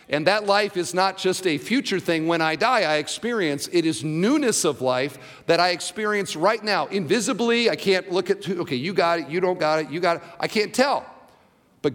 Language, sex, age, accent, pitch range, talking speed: English, male, 50-69, American, 145-200 Hz, 220 wpm